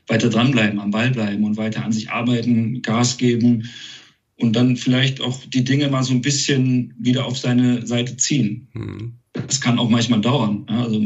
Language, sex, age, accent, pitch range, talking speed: German, male, 40-59, German, 110-125 Hz, 180 wpm